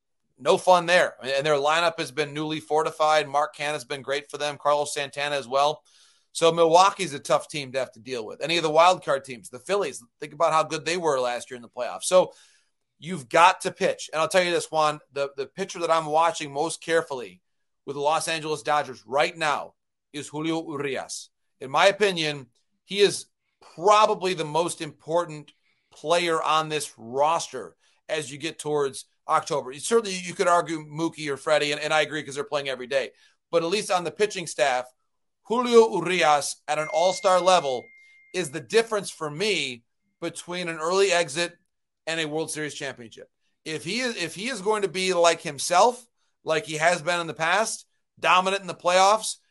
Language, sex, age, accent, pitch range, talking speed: English, male, 30-49, American, 150-185 Hz, 190 wpm